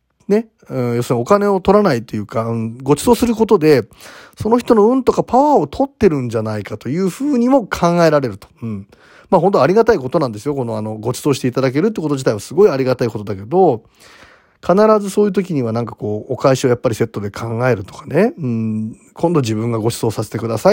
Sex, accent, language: male, native, Japanese